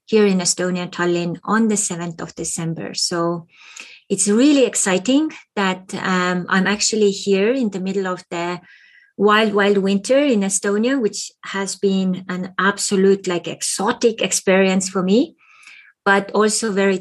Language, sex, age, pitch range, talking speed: English, female, 20-39, 180-205 Hz, 145 wpm